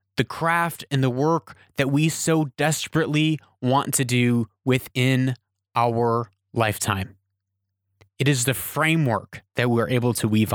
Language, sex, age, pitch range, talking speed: English, male, 30-49, 110-155 Hz, 135 wpm